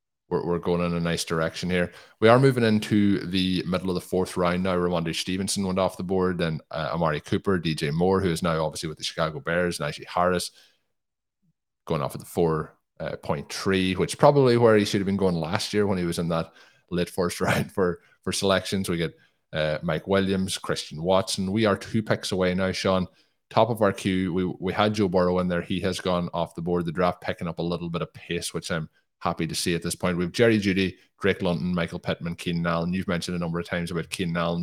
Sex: male